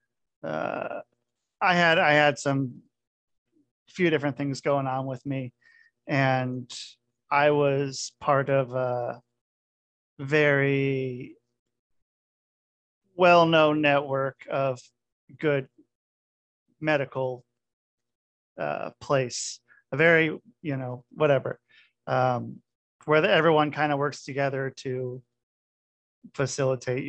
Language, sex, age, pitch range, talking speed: English, male, 40-59, 125-145 Hz, 90 wpm